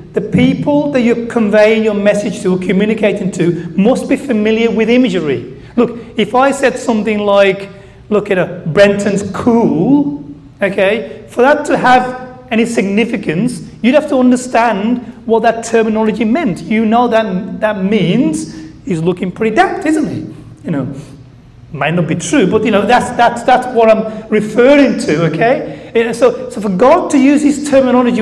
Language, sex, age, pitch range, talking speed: English, male, 30-49, 205-250 Hz, 170 wpm